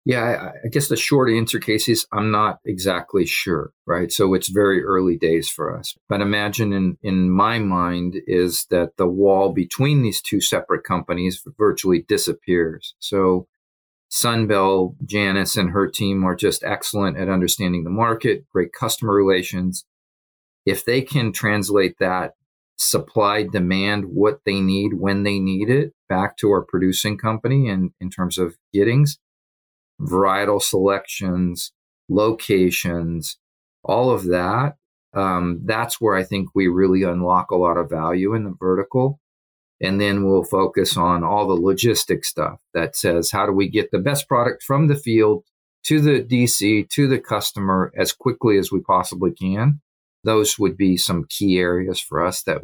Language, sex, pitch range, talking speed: English, male, 90-110 Hz, 160 wpm